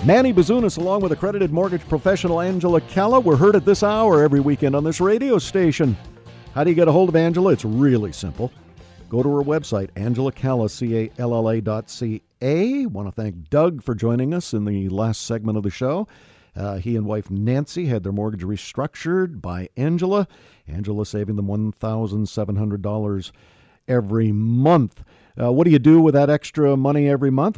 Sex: male